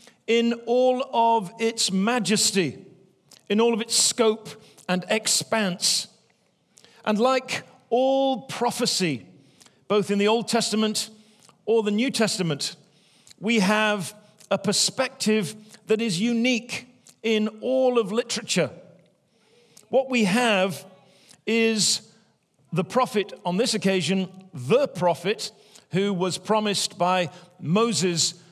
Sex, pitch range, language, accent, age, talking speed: male, 190-235 Hz, English, British, 50-69, 110 wpm